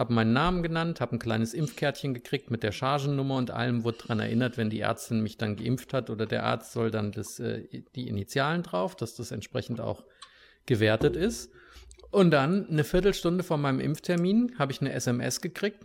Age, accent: 50-69, German